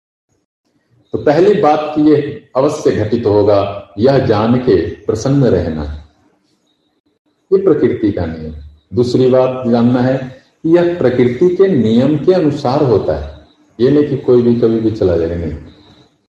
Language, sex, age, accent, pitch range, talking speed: Hindi, male, 50-69, native, 115-150 Hz, 145 wpm